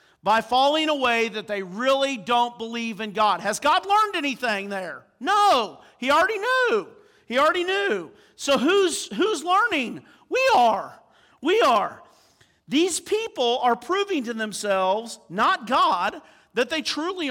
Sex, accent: male, American